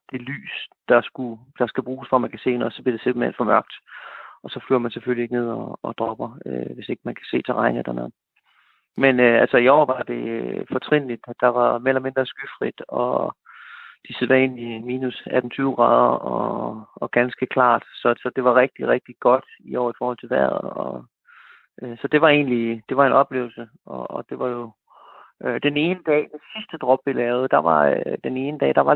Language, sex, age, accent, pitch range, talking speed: Danish, male, 30-49, native, 120-135 Hz, 220 wpm